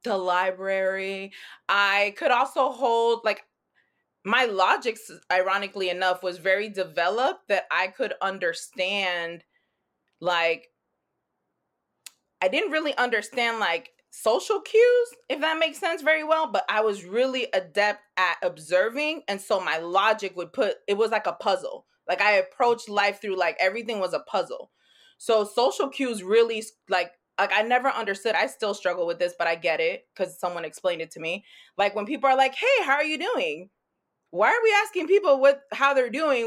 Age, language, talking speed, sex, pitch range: 20-39, English, 170 wpm, female, 195-300 Hz